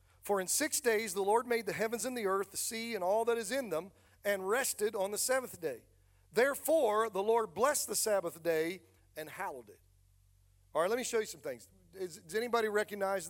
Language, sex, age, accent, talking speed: English, male, 40-59, American, 210 wpm